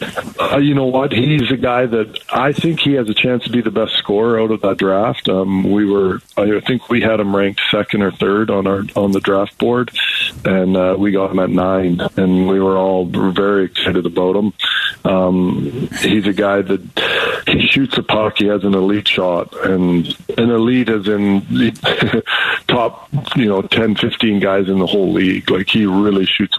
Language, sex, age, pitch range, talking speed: English, male, 50-69, 95-110 Hz, 205 wpm